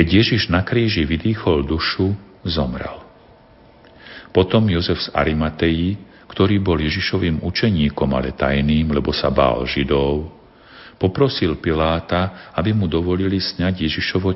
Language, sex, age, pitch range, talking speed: Slovak, male, 50-69, 75-95 Hz, 115 wpm